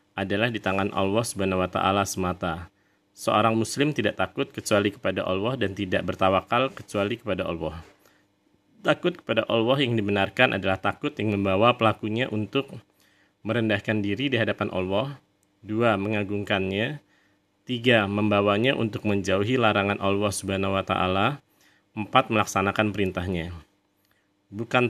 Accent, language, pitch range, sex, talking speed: native, Indonesian, 95-110 Hz, male, 125 wpm